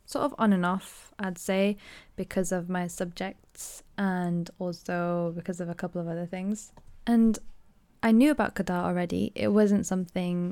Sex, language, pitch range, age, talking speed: female, English, 175-200 Hz, 10-29, 165 wpm